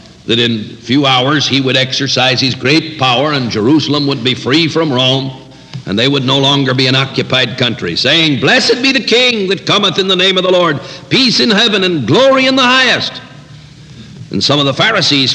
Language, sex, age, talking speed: English, male, 60-79, 205 wpm